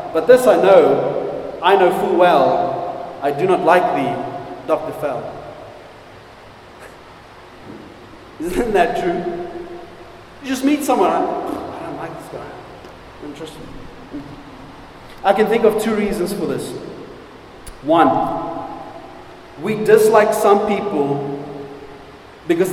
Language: English